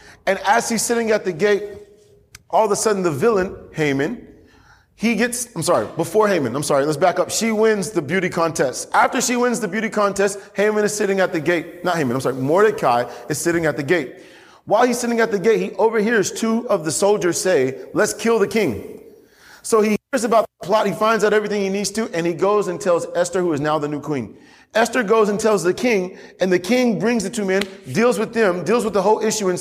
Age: 30-49